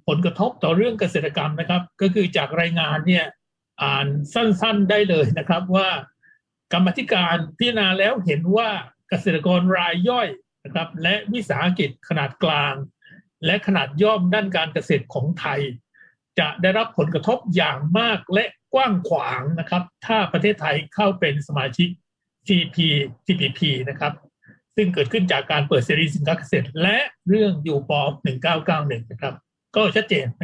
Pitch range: 155-205 Hz